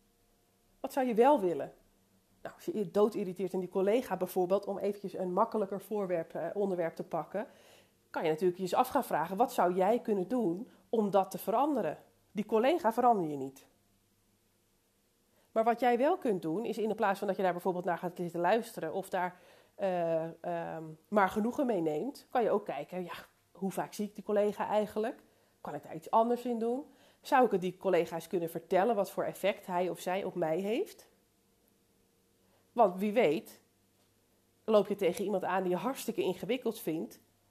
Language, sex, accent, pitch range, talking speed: Dutch, female, Dutch, 175-225 Hz, 180 wpm